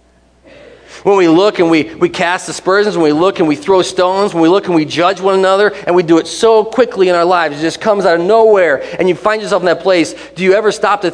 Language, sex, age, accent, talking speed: English, male, 40-59, American, 270 wpm